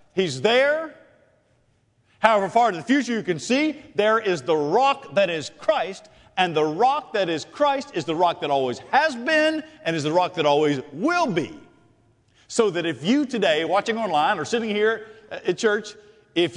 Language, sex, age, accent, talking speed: English, male, 50-69, American, 185 wpm